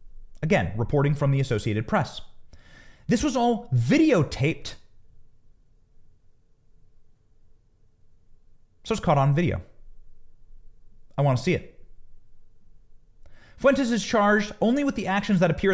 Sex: male